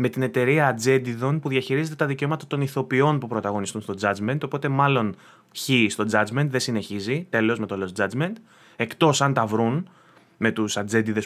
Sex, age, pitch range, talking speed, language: male, 20-39, 110-140 Hz, 175 wpm, Greek